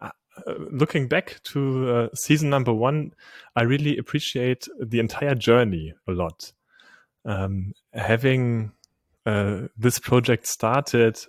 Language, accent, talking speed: English, German, 115 wpm